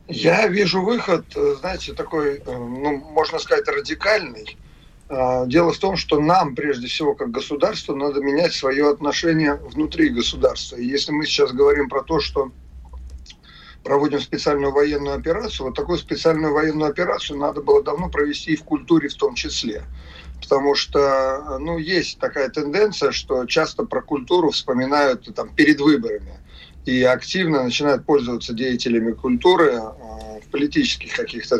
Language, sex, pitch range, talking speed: Russian, male, 125-170 Hz, 140 wpm